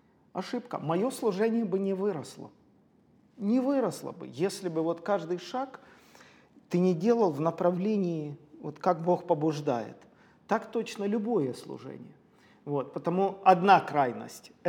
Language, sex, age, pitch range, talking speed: Russian, male, 40-59, 155-215 Hz, 125 wpm